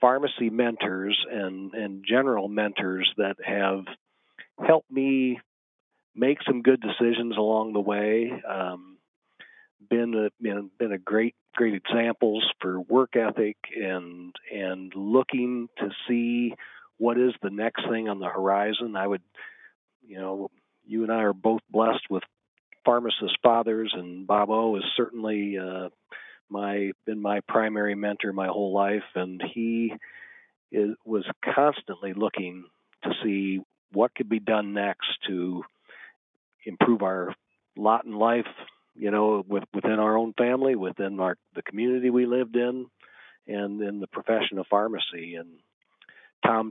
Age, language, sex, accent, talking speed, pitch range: 40-59, English, male, American, 140 wpm, 100-115 Hz